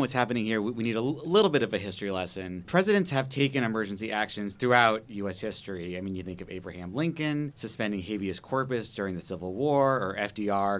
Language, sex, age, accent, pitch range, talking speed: English, male, 30-49, American, 100-125 Hz, 200 wpm